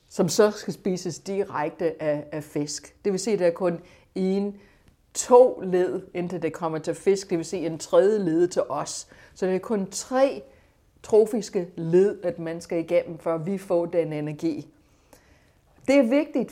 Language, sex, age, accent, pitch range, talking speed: Danish, female, 60-79, native, 165-215 Hz, 180 wpm